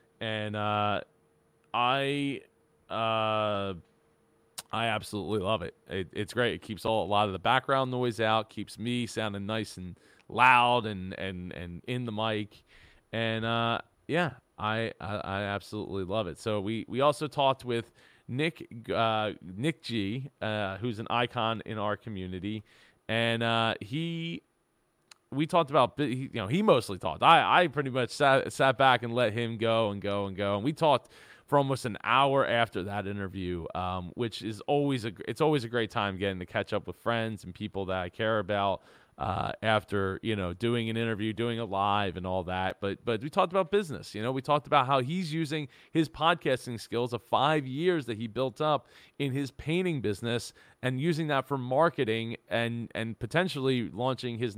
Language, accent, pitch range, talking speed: English, American, 105-130 Hz, 185 wpm